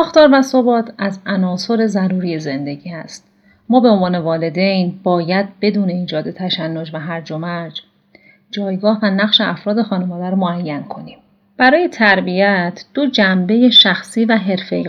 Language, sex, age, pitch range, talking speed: Persian, female, 40-59, 175-210 Hz, 135 wpm